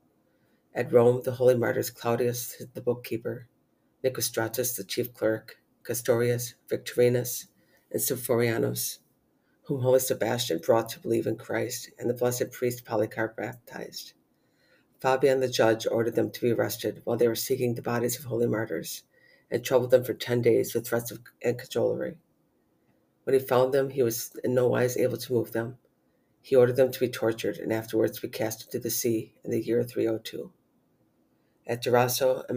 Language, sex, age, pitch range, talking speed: English, female, 50-69, 115-125 Hz, 165 wpm